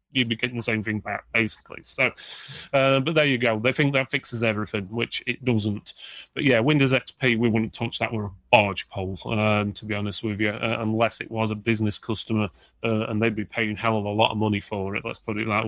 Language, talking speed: English, 240 wpm